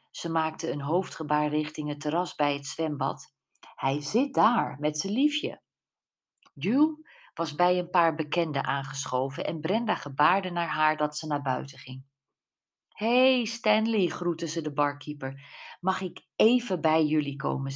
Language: Dutch